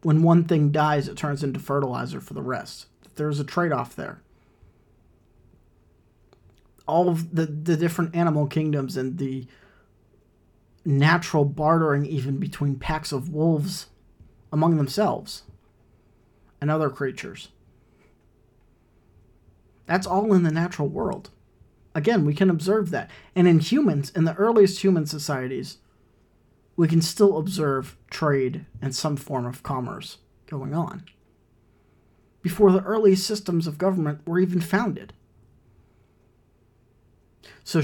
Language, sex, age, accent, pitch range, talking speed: English, male, 40-59, American, 120-170 Hz, 120 wpm